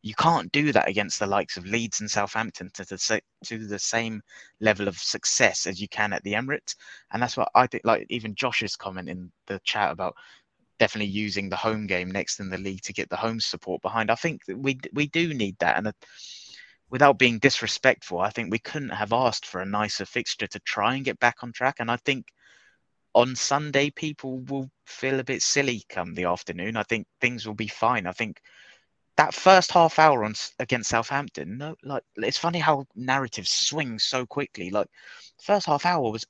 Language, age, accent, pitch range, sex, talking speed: English, 20-39, British, 105-130 Hz, male, 210 wpm